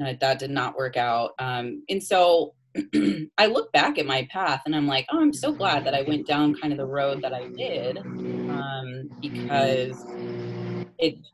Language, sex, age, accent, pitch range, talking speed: English, female, 20-39, American, 125-155 Hz, 185 wpm